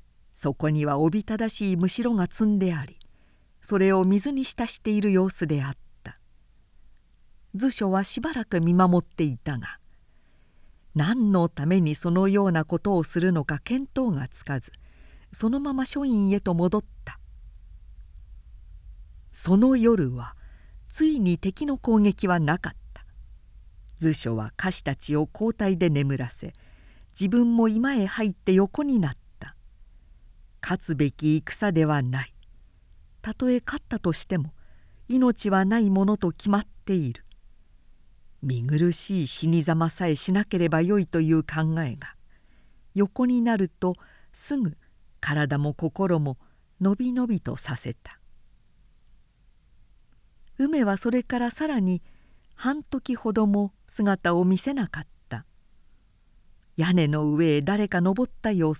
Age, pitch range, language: 50-69, 130-210 Hz, Japanese